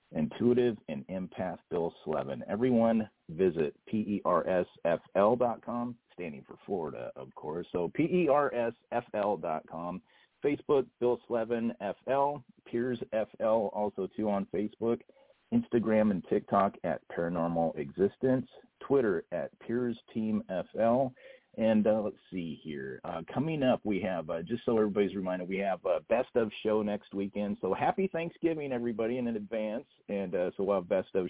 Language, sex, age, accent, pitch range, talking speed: English, male, 40-59, American, 95-120 Hz, 135 wpm